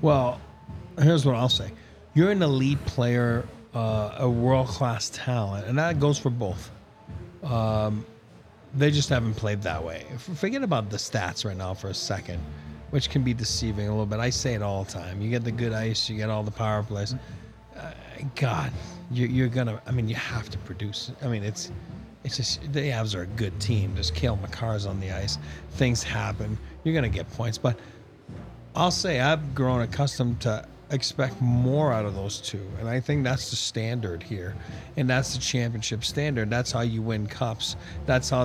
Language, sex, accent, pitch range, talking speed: English, male, American, 105-135 Hz, 195 wpm